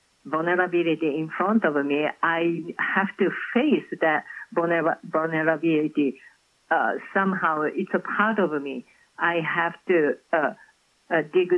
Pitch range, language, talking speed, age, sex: 155-190 Hz, English, 125 wpm, 50-69, female